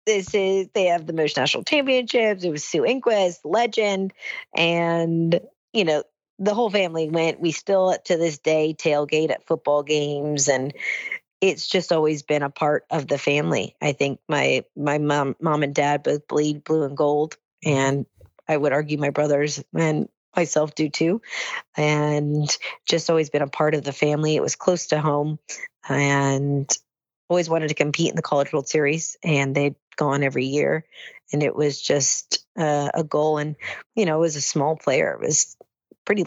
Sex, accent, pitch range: female, American, 145-170 Hz